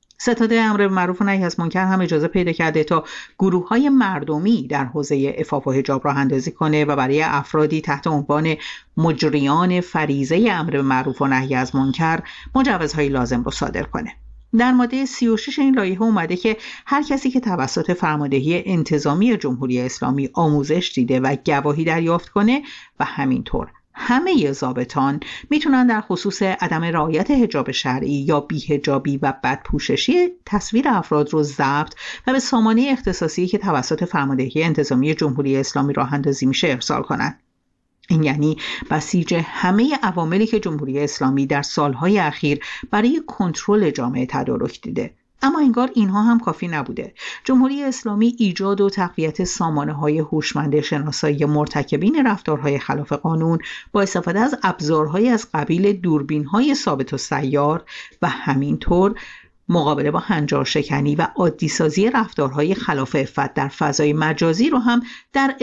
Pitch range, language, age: 145-210 Hz, Persian, 50-69